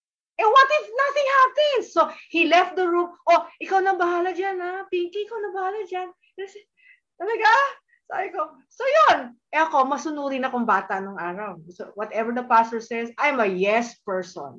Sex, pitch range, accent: female, 250-360 Hz, Filipino